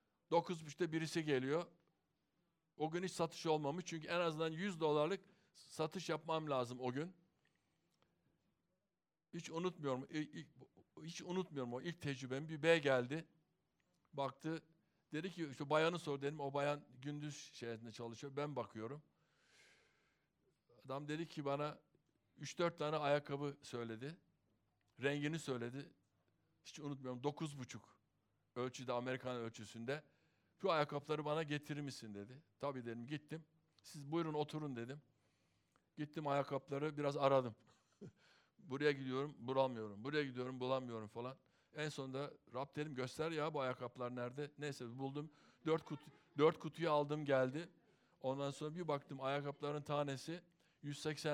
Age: 60-79